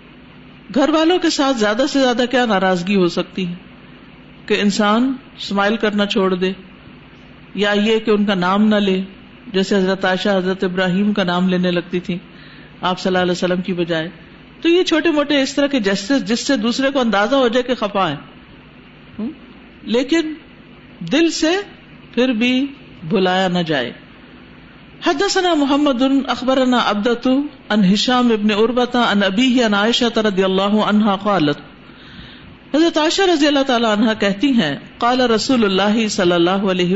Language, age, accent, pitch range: English, 50-69, Indian, 190-260 Hz